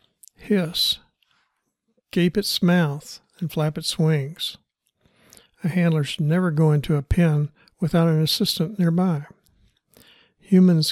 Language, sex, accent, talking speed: English, male, American, 115 wpm